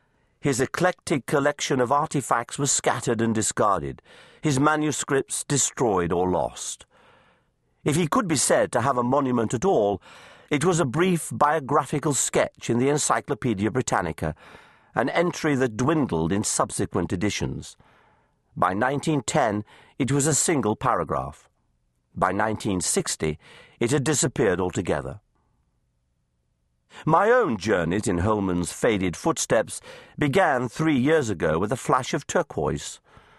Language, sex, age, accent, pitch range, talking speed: English, male, 50-69, British, 95-145 Hz, 130 wpm